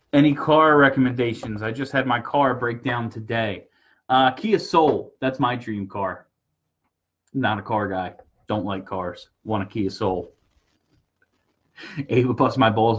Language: English